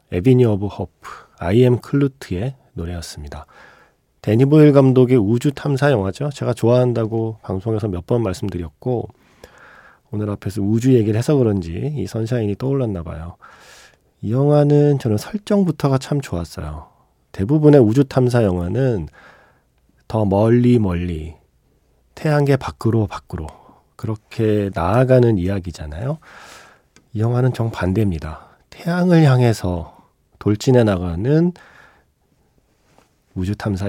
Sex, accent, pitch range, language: male, native, 95-135 Hz, Korean